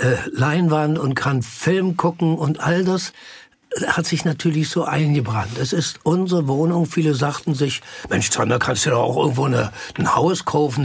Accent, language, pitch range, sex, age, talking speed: German, German, 135-170 Hz, male, 60-79, 170 wpm